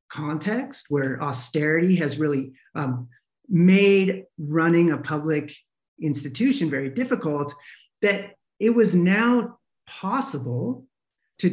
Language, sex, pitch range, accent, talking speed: English, male, 145-190 Hz, American, 100 wpm